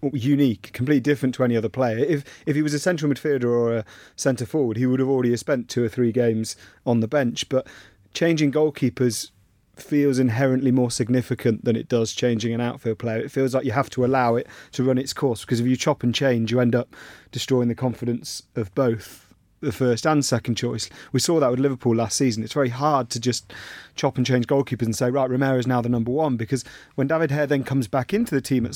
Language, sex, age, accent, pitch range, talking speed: English, male, 30-49, British, 120-145 Hz, 230 wpm